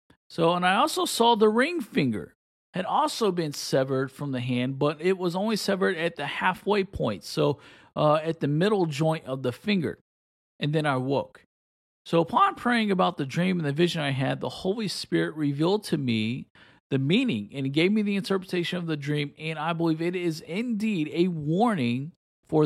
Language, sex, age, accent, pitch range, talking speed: English, male, 40-59, American, 140-185 Hz, 195 wpm